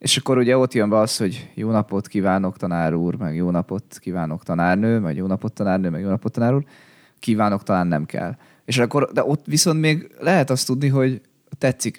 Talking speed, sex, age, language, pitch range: 210 wpm, male, 20-39, Hungarian, 100-135 Hz